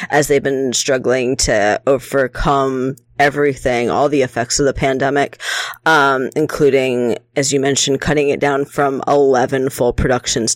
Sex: female